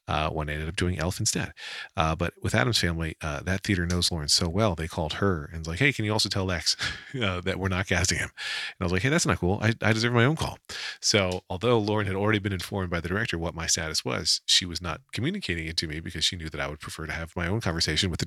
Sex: male